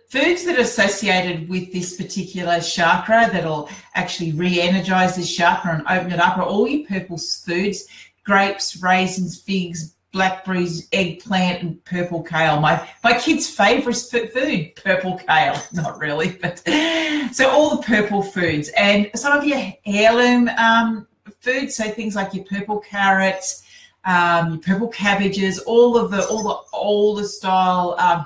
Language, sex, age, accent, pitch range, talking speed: English, female, 40-59, Australian, 180-225 Hz, 150 wpm